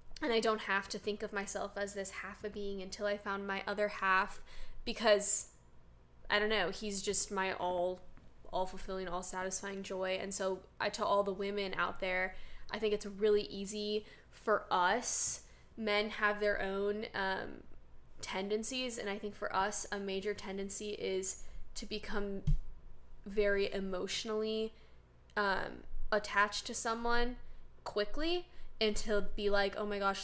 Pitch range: 195-210 Hz